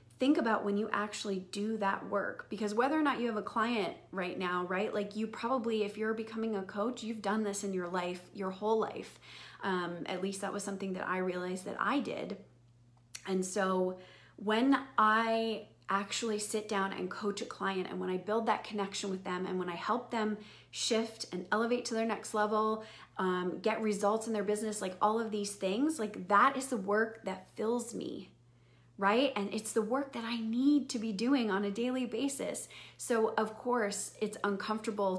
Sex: female